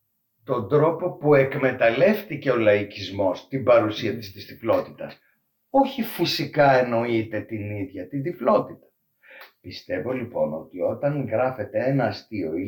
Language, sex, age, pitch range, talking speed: Greek, male, 60-79, 110-160 Hz, 125 wpm